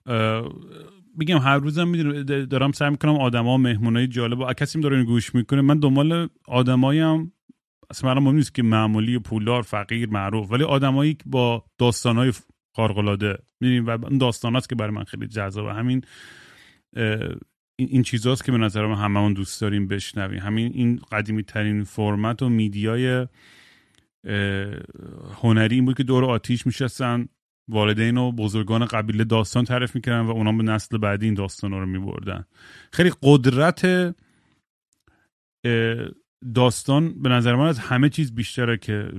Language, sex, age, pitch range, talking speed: Persian, male, 30-49, 110-135 Hz, 135 wpm